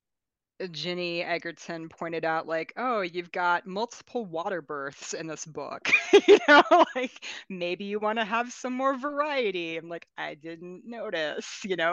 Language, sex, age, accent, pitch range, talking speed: English, female, 30-49, American, 150-195 Hz, 160 wpm